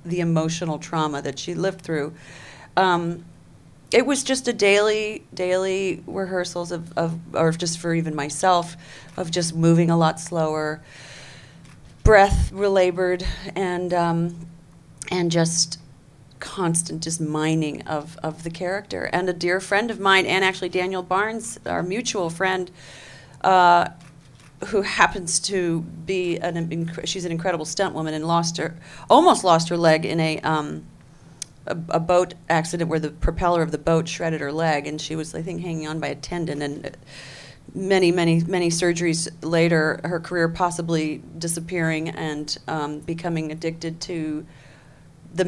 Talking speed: 150 wpm